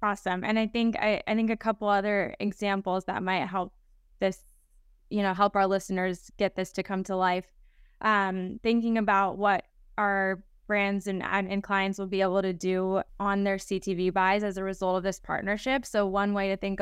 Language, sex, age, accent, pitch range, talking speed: English, female, 20-39, American, 185-205 Hz, 195 wpm